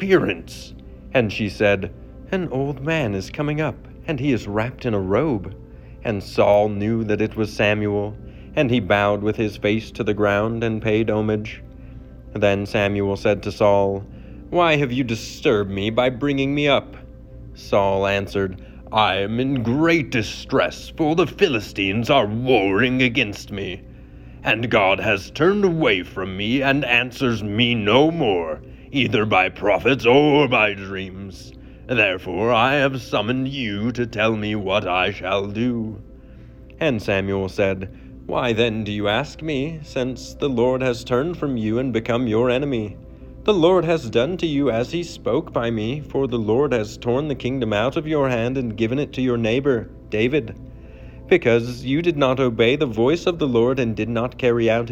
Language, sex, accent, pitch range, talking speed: English, male, American, 100-130 Hz, 170 wpm